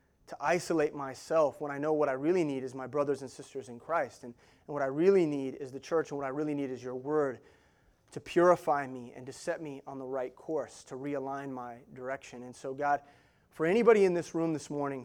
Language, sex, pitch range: English, male, 135-170 Hz